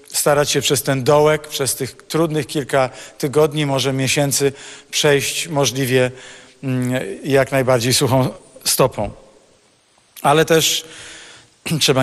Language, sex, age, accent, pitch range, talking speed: Polish, male, 50-69, native, 130-150 Hz, 105 wpm